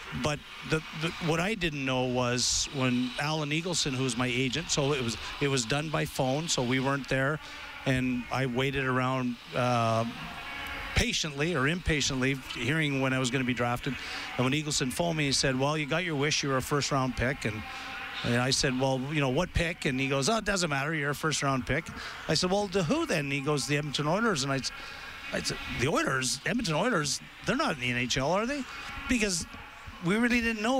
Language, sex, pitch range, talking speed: English, male, 130-165 Hz, 215 wpm